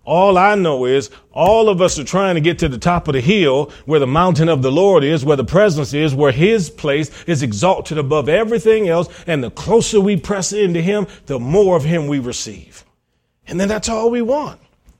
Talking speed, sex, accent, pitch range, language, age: 220 wpm, male, American, 115-170 Hz, English, 40-59